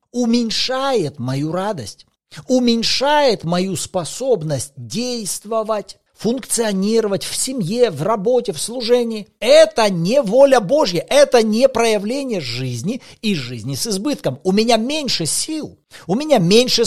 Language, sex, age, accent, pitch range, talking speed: Russian, male, 40-59, native, 155-240 Hz, 115 wpm